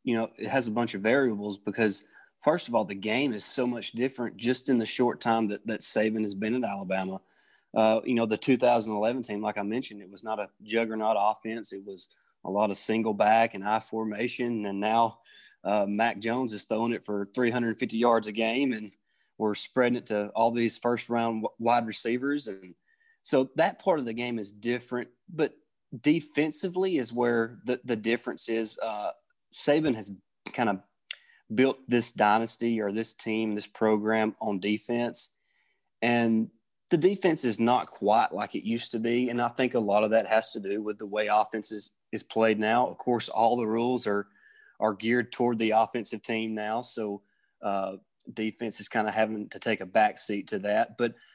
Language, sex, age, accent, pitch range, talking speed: English, male, 20-39, American, 110-120 Hz, 195 wpm